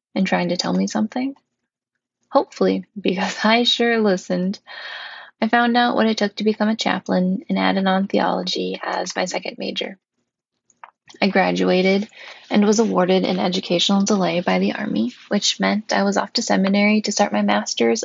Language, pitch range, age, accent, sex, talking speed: English, 180-235 Hz, 10-29, American, female, 170 wpm